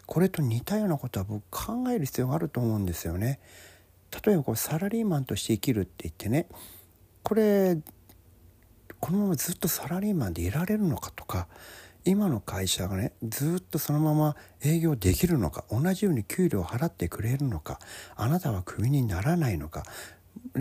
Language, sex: Japanese, male